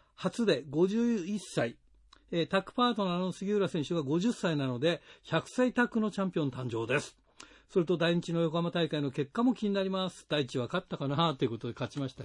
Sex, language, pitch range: male, Japanese, 150-210 Hz